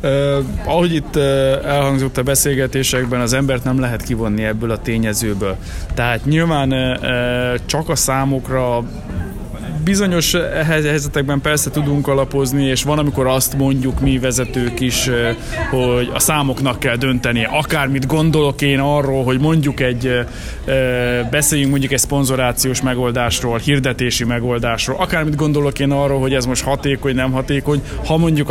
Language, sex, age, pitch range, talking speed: Hungarian, male, 20-39, 125-145 Hz, 130 wpm